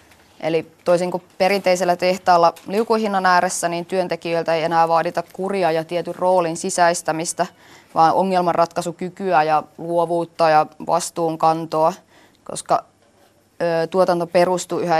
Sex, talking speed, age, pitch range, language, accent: female, 110 wpm, 20-39, 165-180 Hz, Finnish, native